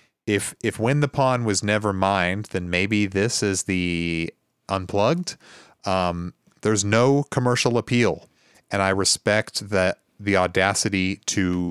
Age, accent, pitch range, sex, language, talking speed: 30-49, American, 90-115 Hz, male, English, 135 wpm